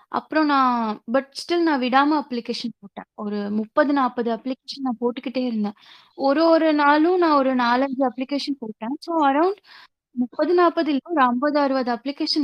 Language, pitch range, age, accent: Tamil, 225-285 Hz, 20-39, native